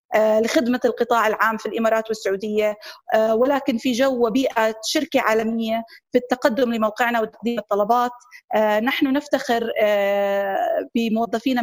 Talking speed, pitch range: 105 wpm, 225-265 Hz